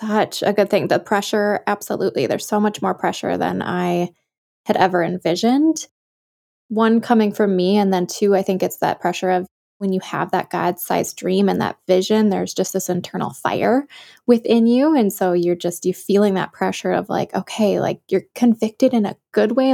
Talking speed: 195 wpm